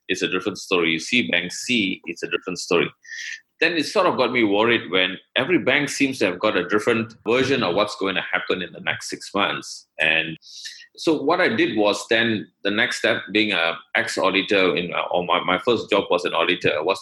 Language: English